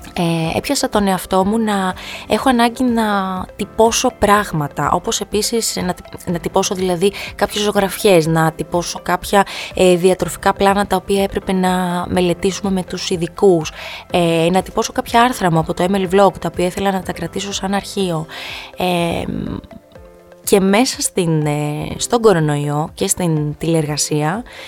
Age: 20-39